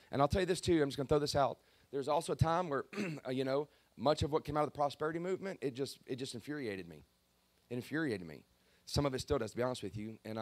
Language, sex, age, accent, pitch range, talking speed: English, male, 30-49, American, 105-130 Hz, 280 wpm